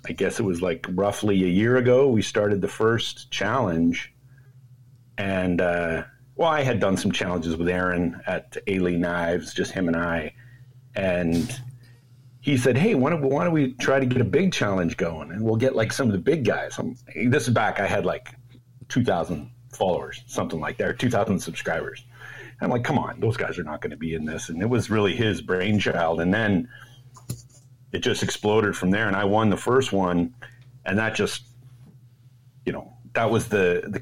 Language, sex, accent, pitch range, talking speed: English, male, American, 90-125 Hz, 195 wpm